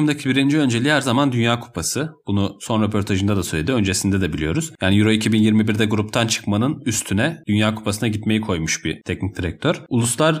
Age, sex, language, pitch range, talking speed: 30-49, male, Turkish, 105-140 Hz, 165 wpm